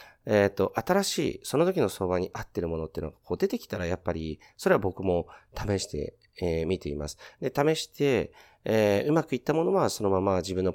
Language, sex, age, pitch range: Japanese, male, 40-59, 85-115 Hz